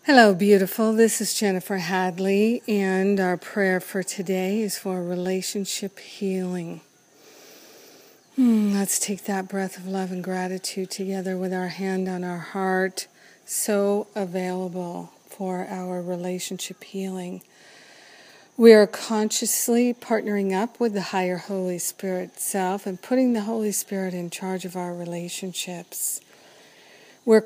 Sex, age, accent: female, 50-69, American